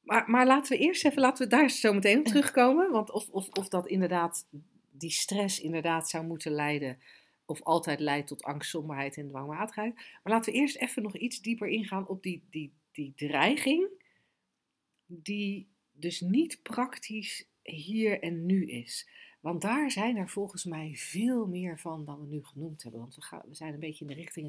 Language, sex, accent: Dutch, female, Dutch